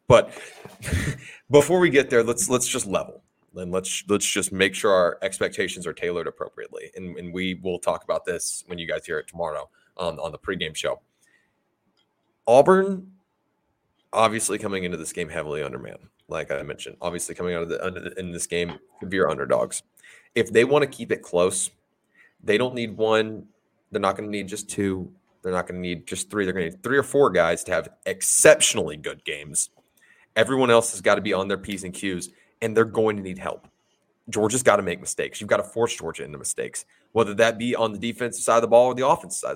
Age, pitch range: 20-39, 95-140 Hz